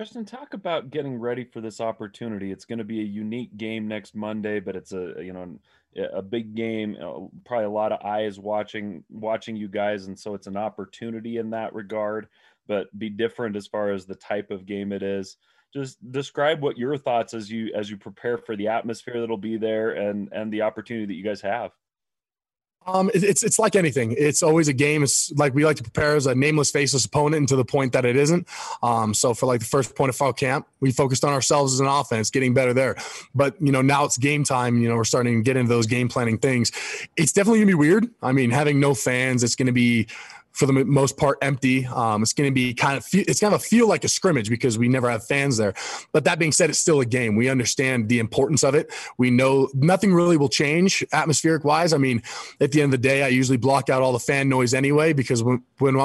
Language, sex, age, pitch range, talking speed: English, male, 20-39, 115-145 Hz, 240 wpm